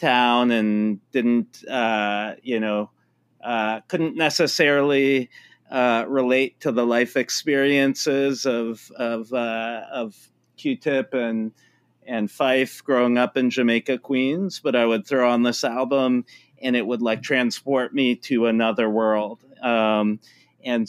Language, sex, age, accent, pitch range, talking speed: English, male, 40-59, American, 115-135 Hz, 130 wpm